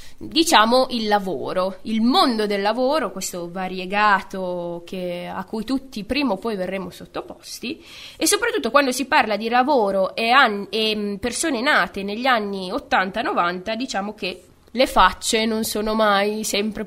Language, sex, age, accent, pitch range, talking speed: Italian, female, 20-39, native, 200-270 Hz, 145 wpm